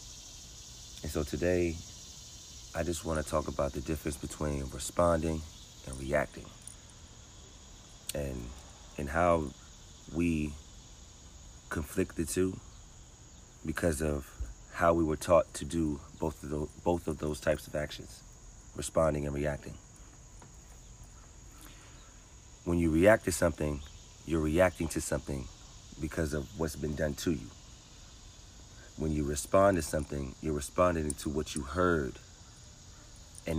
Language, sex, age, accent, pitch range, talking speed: English, male, 40-59, American, 75-85 Hz, 120 wpm